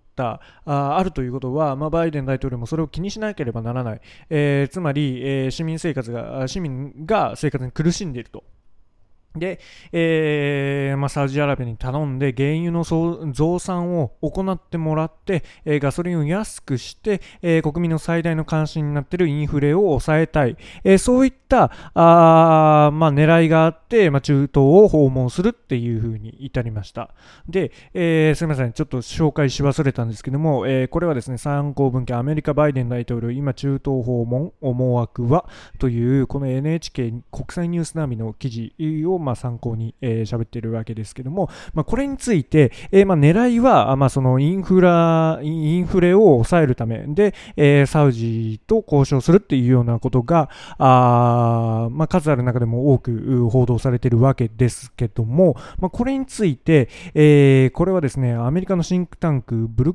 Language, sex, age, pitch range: Japanese, male, 20-39, 125-165 Hz